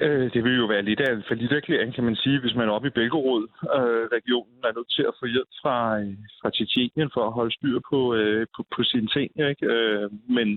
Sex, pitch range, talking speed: male, 105-125 Hz, 220 wpm